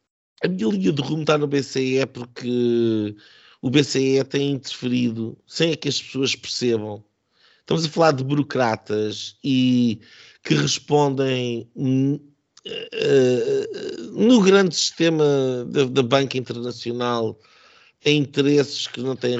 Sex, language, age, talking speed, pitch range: male, Portuguese, 50-69, 125 wpm, 120-145 Hz